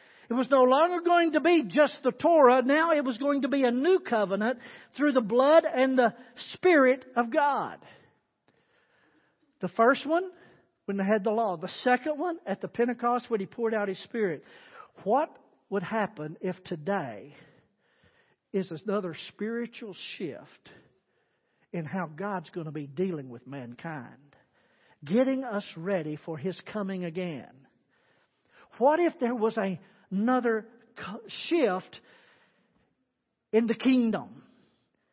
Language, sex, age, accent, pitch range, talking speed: English, male, 50-69, American, 210-295 Hz, 140 wpm